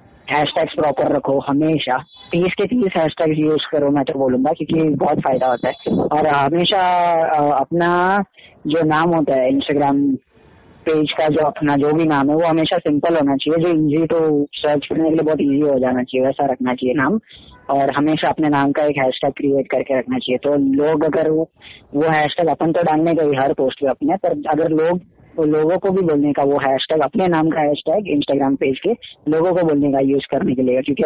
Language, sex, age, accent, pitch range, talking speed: Hindi, female, 20-39, native, 135-155 Hz, 195 wpm